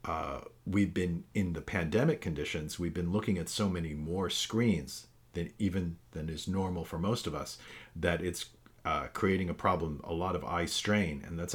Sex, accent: male, American